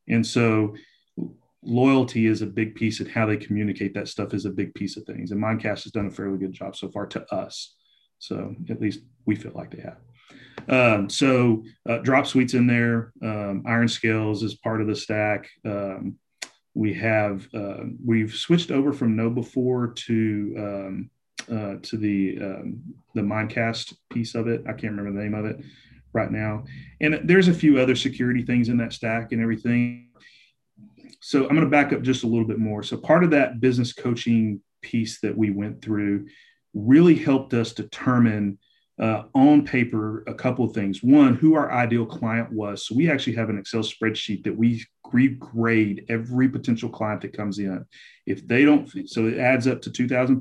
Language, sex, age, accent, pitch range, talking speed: English, male, 30-49, American, 105-130 Hz, 190 wpm